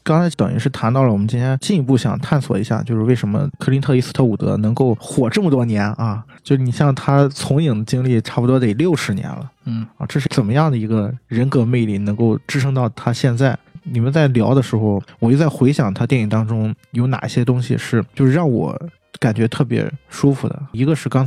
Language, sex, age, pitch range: Chinese, male, 20-39, 120-155 Hz